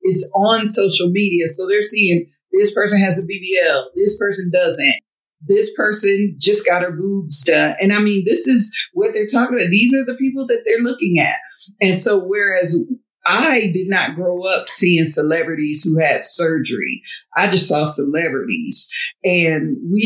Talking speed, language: 175 wpm, English